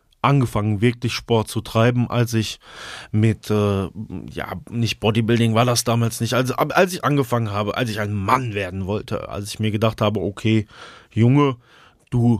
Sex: male